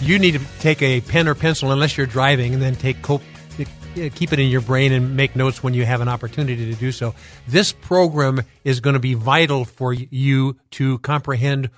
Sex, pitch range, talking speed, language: male, 125-145 Hz, 210 wpm, English